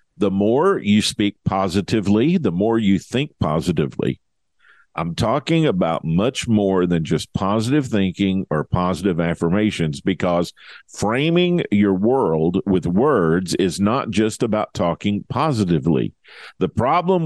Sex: male